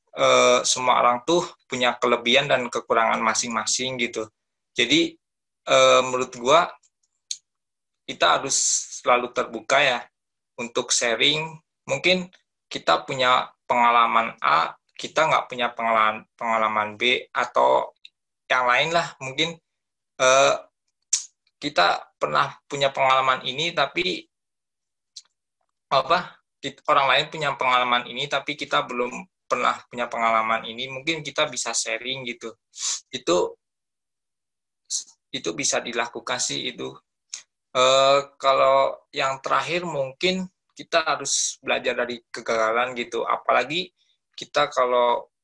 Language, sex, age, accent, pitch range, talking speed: Indonesian, male, 20-39, native, 120-140 Hz, 105 wpm